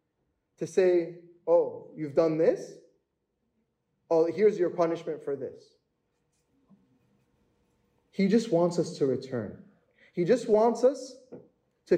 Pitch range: 160-235 Hz